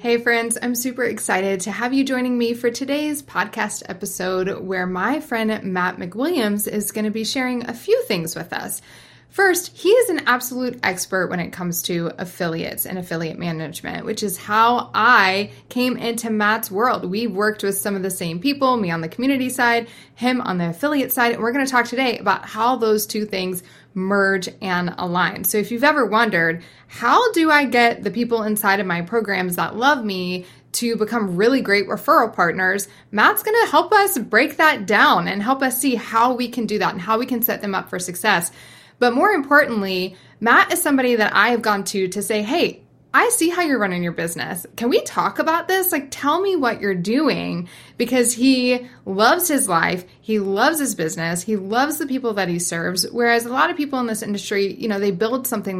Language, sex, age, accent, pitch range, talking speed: English, female, 20-39, American, 190-255 Hz, 205 wpm